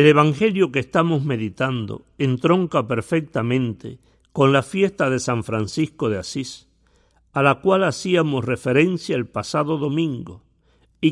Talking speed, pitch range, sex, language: 130 wpm, 120-165 Hz, male, Spanish